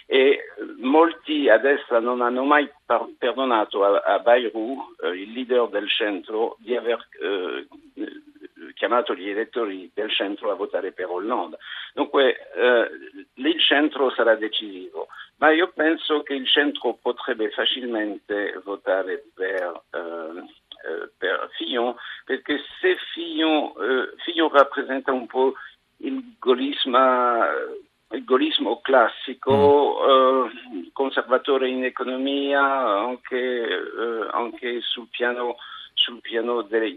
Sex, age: male, 60-79